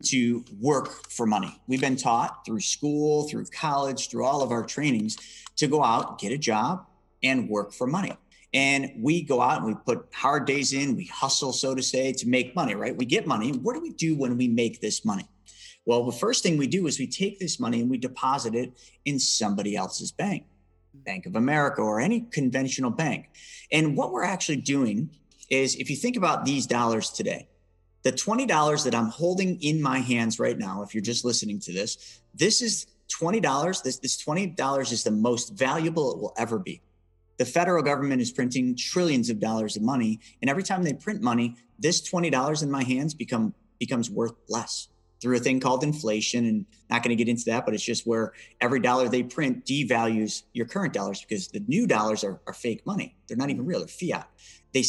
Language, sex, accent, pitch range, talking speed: English, male, American, 115-150 Hz, 210 wpm